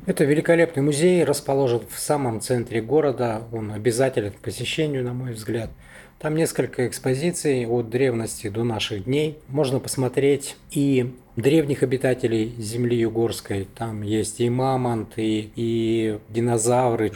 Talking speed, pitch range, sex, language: 130 wpm, 110-130 Hz, male, Russian